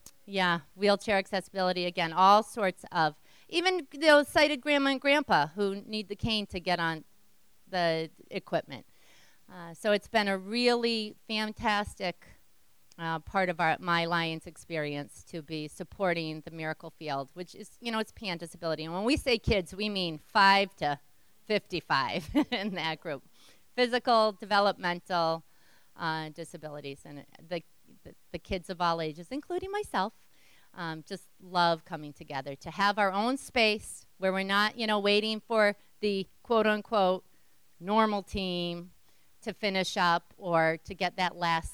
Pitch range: 160-215 Hz